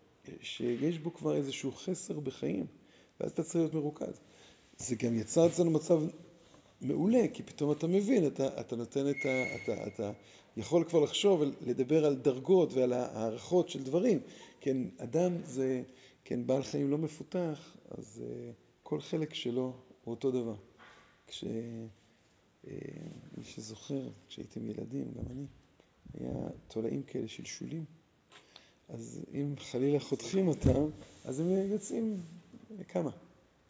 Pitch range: 125-165 Hz